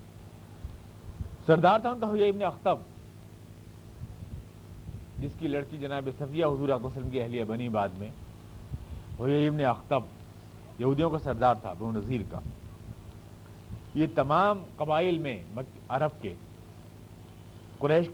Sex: male